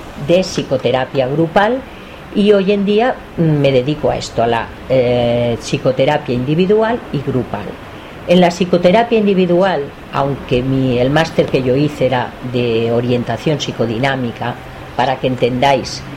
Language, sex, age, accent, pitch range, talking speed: Spanish, female, 40-59, Spanish, 125-175 Hz, 130 wpm